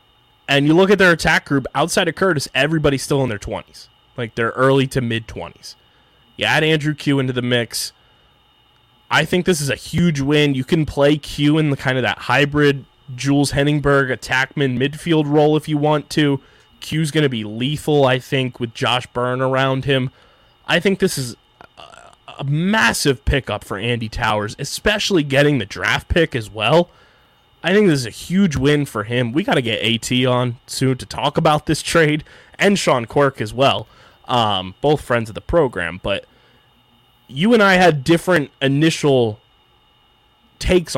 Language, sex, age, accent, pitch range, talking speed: English, male, 20-39, American, 120-150 Hz, 180 wpm